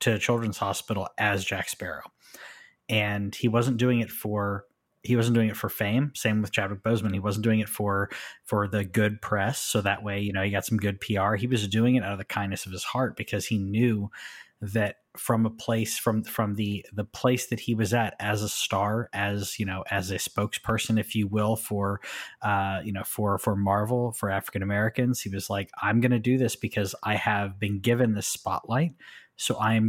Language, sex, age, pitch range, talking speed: English, male, 20-39, 100-115 Hz, 215 wpm